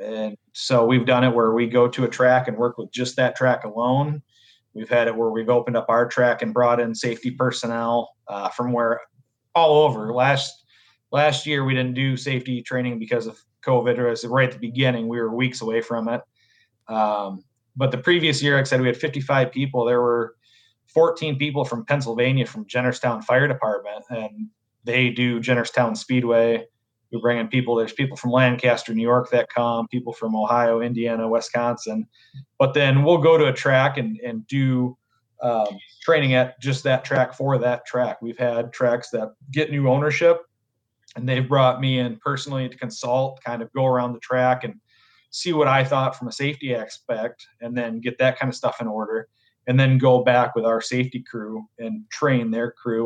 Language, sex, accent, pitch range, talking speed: English, male, American, 115-130 Hz, 190 wpm